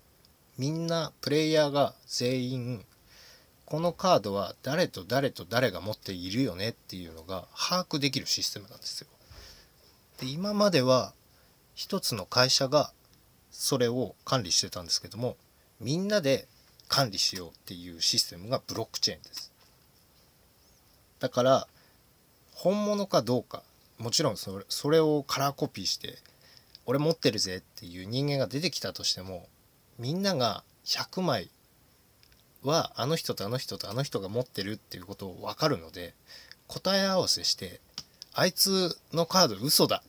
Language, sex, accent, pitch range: Japanese, male, native, 95-150 Hz